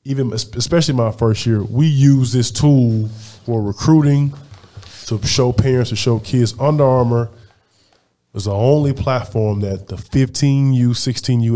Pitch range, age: 105-130 Hz, 20-39